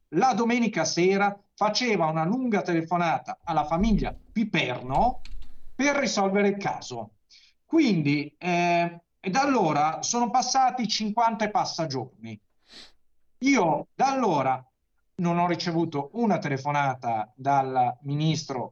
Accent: native